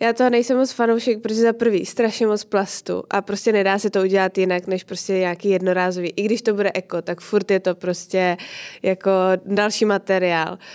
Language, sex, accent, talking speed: Czech, female, native, 195 wpm